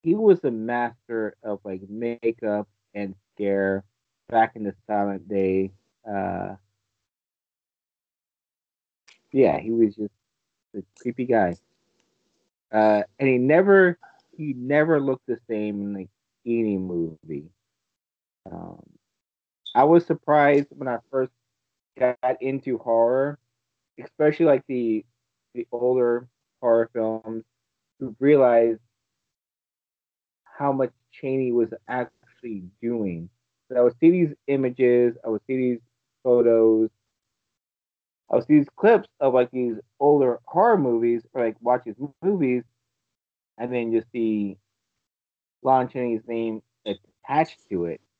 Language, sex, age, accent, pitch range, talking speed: English, male, 30-49, American, 105-125 Hz, 120 wpm